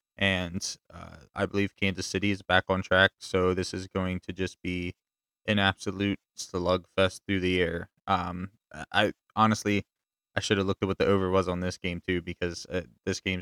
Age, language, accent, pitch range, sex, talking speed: 20-39, English, American, 90-95 Hz, male, 190 wpm